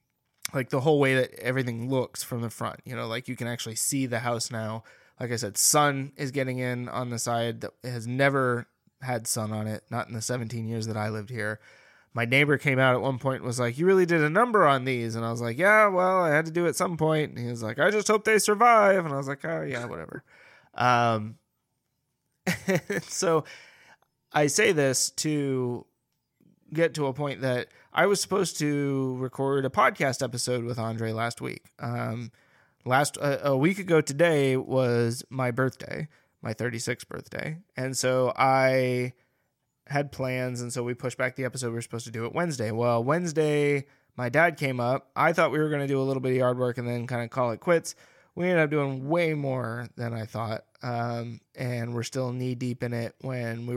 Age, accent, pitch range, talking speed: 20-39, American, 120-145 Hz, 215 wpm